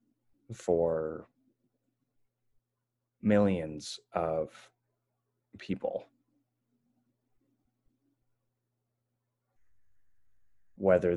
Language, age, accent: English, 30-49, American